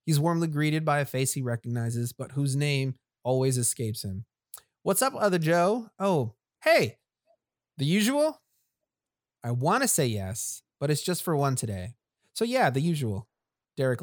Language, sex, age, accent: English, male, 30-49, American